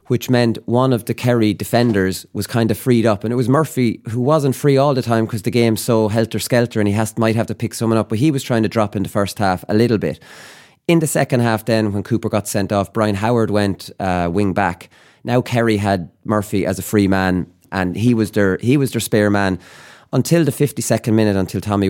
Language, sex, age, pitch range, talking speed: English, male, 30-49, 100-130 Hz, 240 wpm